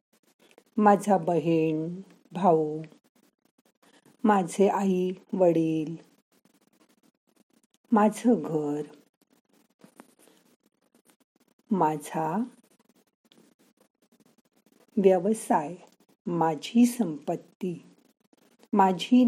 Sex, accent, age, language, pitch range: female, native, 50-69, Marathi, 165-235 Hz